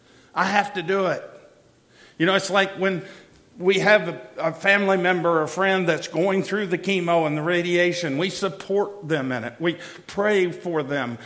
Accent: American